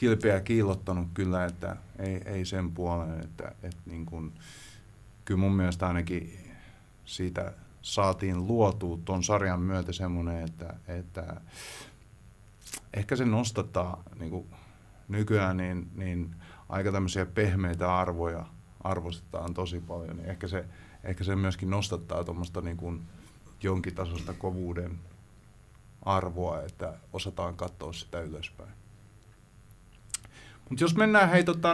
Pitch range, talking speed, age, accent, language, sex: 90-110 Hz, 115 wpm, 30-49, native, Finnish, male